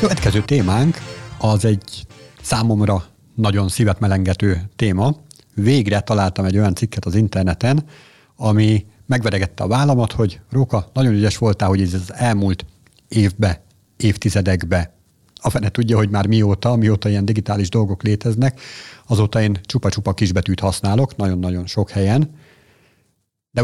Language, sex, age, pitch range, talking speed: Hungarian, male, 50-69, 100-125 Hz, 130 wpm